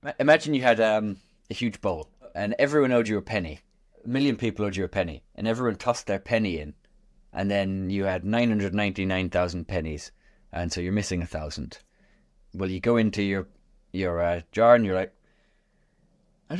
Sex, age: male, 30-49